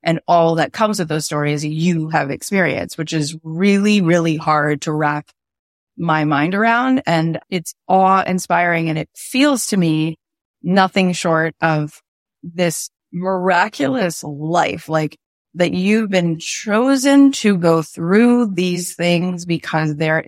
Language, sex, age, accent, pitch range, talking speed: English, female, 20-39, American, 155-185 Hz, 140 wpm